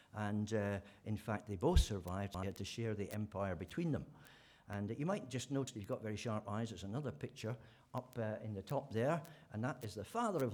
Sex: male